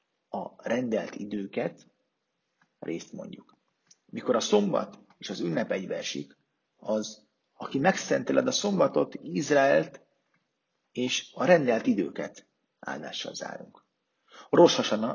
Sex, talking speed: male, 100 wpm